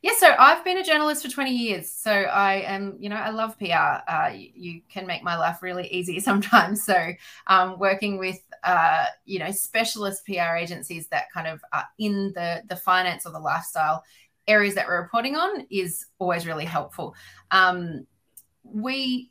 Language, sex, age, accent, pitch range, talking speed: English, female, 20-39, Australian, 170-215 Hz, 185 wpm